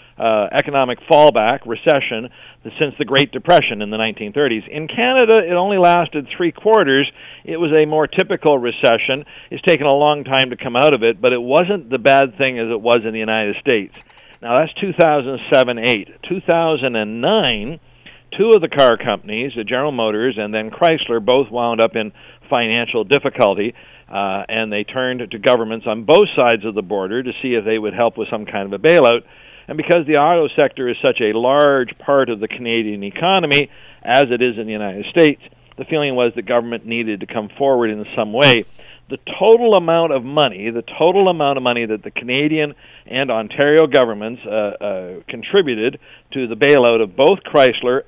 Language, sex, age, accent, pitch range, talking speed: English, male, 50-69, American, 115-150 Hz, 185 wpm